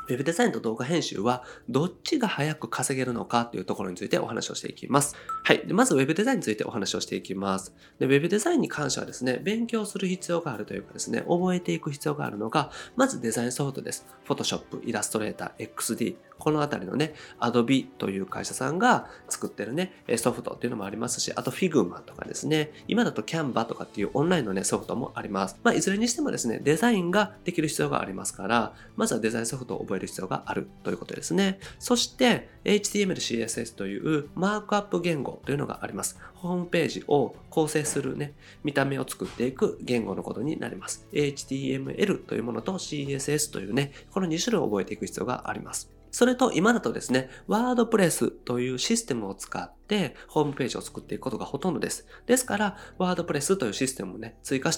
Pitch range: 125-210 Hz